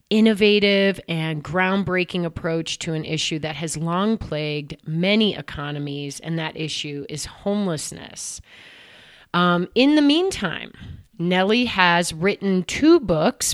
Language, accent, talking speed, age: English, American, 120 wpm, 30-49